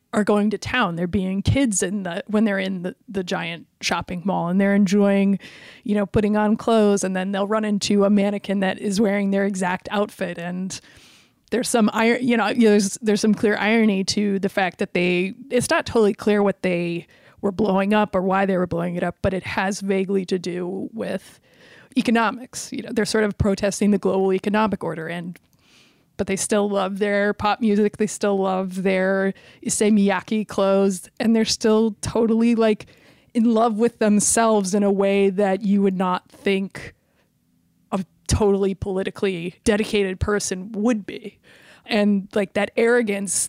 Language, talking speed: English, 180 wpm